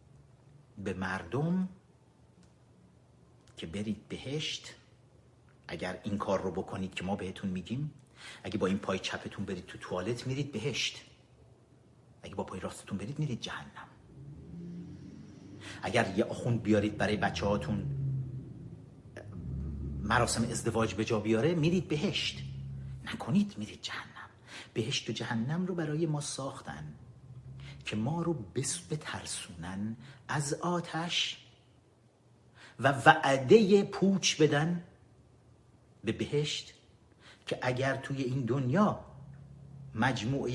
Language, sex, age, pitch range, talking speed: Persian, male, 50-69, 110-150 Hz, 110 wpm